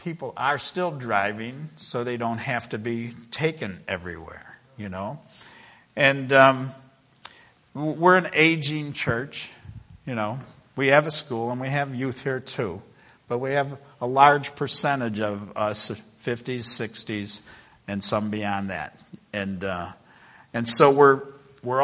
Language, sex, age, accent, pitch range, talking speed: English, male, 60-79, American, 110-135 Hz, 145 wpm